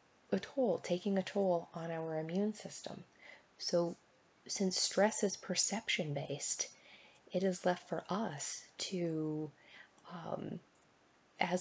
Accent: American